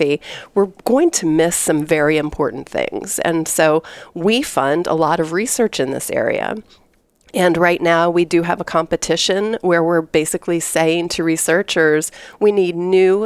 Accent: American